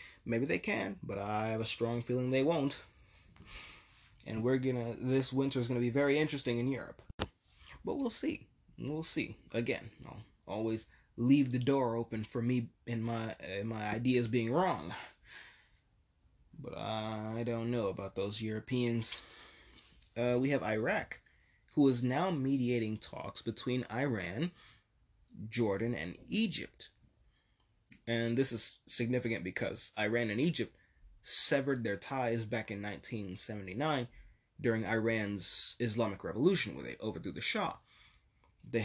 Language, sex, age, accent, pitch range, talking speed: English, male, 20-39, American, 105-125 Hz, 135 wpm